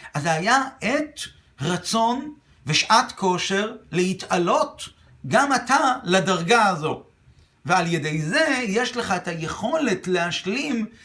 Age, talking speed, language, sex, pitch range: 50-69, 110 wpm, Hebrew, male, 165-230 Hz